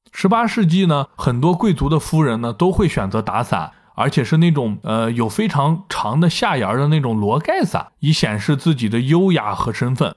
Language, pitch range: Chinese, 125-180 Hz